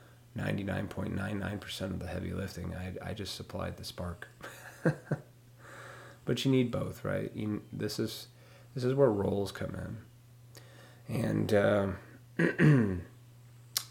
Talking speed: 135 wpm